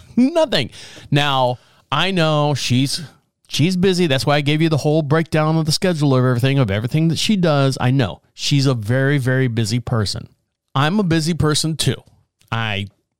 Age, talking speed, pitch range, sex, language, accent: 40-59, 175 wpm, 125-160 Hz, male, English, American